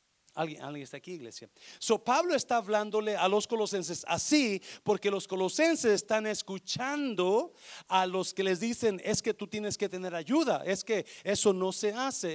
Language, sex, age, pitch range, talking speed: Spanish, male, 40-59, 150-215 Hz, 175 wpm